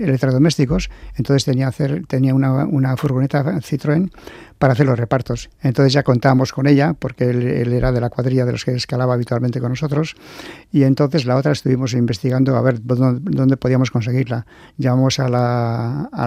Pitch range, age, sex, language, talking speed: 120-140 Hz, 50-69, male, Spanish, 175 wpm